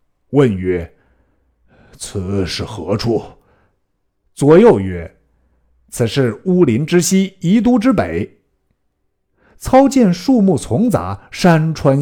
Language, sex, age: Chinese, male, 60-79